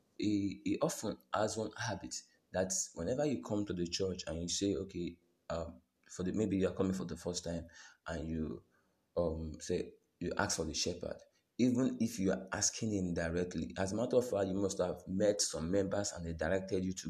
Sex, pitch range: male, 85-110 Hz